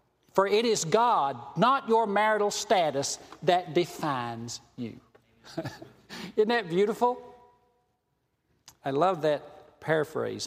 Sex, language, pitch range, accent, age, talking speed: male, English, 170-230 Hz, American, 60-79, 105 wpm